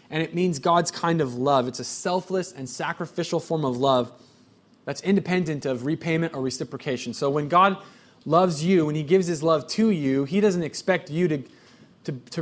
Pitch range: 140-180 Hz